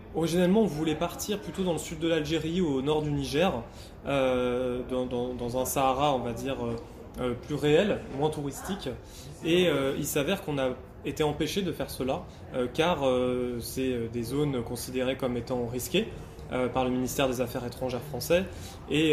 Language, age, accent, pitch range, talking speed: French, 20-39, French, 125-155 Hz, 180 wpm